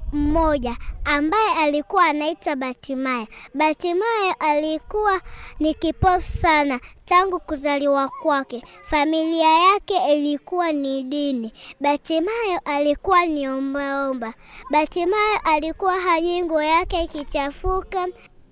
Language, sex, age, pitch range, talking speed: Swahili, male, 20-39, 295-405 Hz, 85 wpm